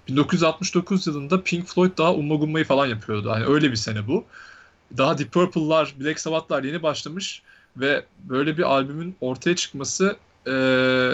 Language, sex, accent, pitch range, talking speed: Turkish, male, native, 130-165 Hz, 145 wpm